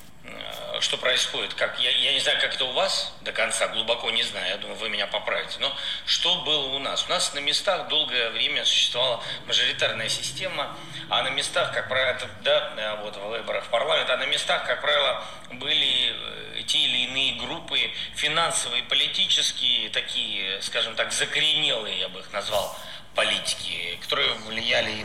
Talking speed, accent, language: 170 wpm, native, Russian